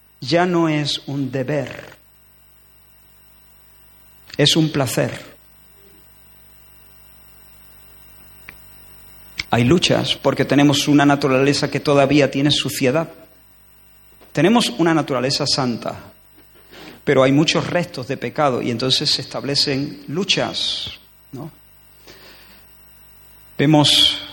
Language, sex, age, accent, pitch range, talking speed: Spanish, male, 50-69, Spanish, 110-150 Hz, 85 wpm